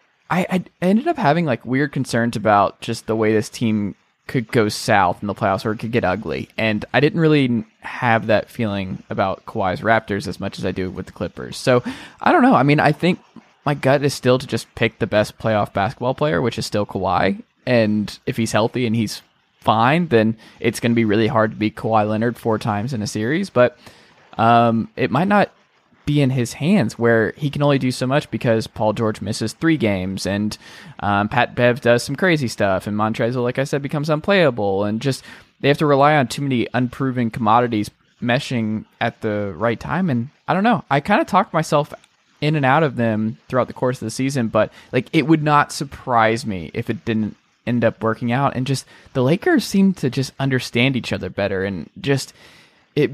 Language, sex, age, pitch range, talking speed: English, male, 20-39, 110-145 Hz, 215 wpm